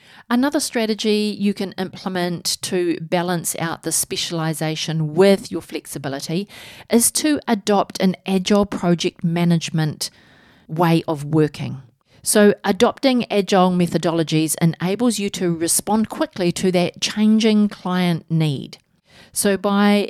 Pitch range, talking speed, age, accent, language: 165-210 Hz, 115 wpm, 40-59, Australian, English